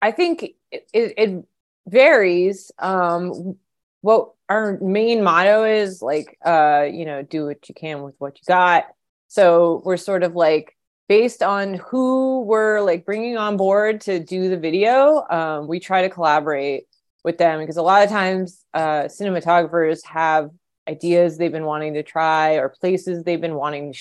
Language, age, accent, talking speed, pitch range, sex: English, 30-49, American, 165 wpm, 150-190 Hz, female